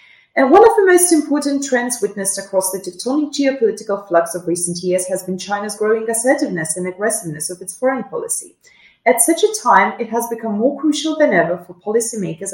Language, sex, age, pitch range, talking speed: English, female, 30-49, 185-300 Hz, 190 wpm